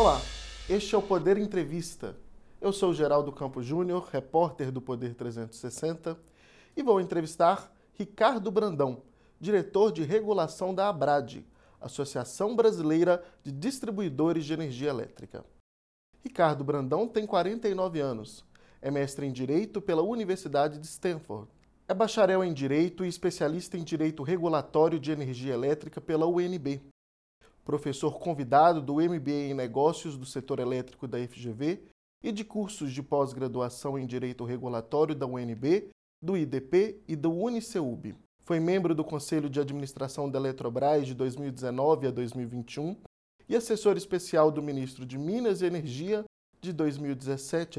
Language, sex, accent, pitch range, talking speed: Portuguese, male, Brazilian, 135-180 Hz, 135 wpm